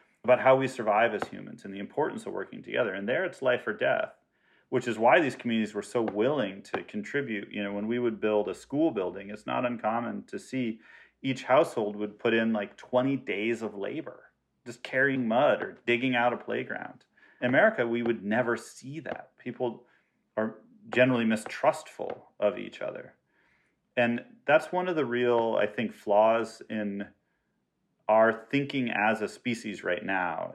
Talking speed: 180 wpm